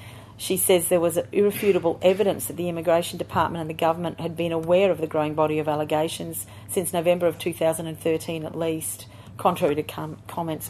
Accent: Australian